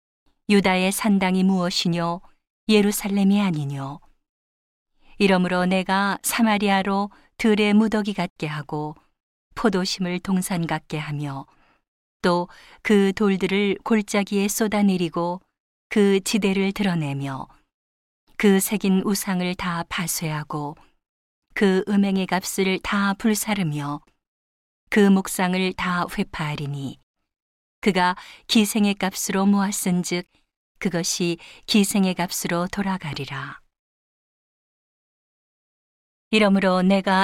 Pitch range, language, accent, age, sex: 170-205 Hz, Korean, native, 40-59, female